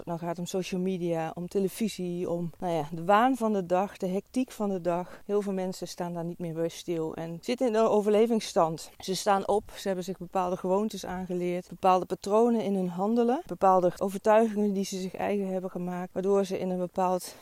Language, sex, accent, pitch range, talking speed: Dutch, female, Dutch, 175-200 Hz, 215 wpm